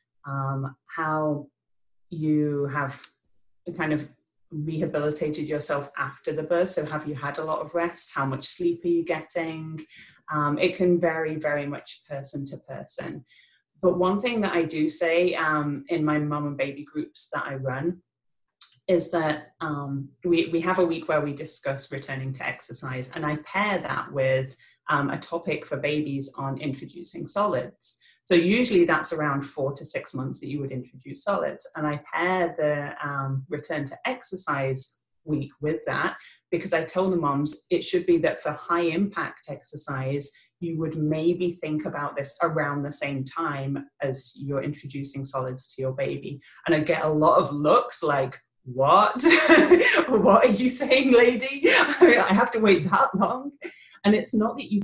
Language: English